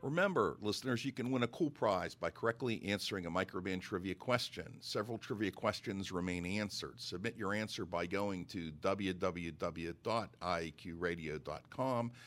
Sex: male